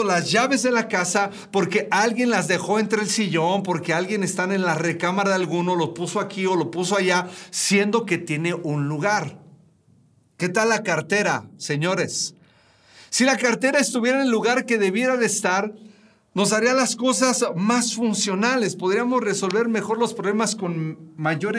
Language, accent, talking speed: Spanish, Mexican, 170 wpm